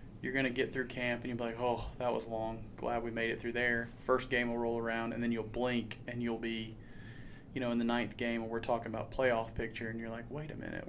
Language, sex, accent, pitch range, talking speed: English, male, American, 115-125 Hz, 275 wpm